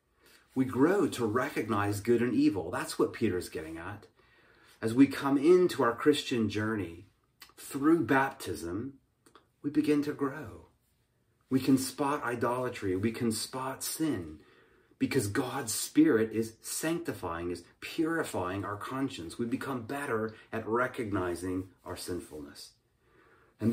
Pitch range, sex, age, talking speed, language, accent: 105-135 Hz, male, 30-49, 125 wpm, English, American